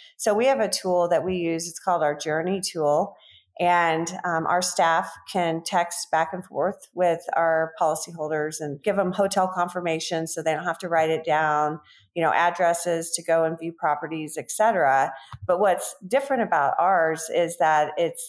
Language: English